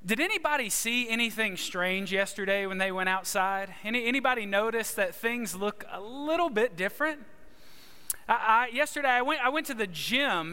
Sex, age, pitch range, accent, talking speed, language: male, 30-49, 210-270 Hz, American, 170 wpm, English